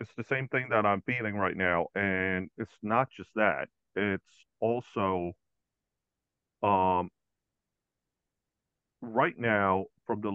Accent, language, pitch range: American, English, 90-120 Hz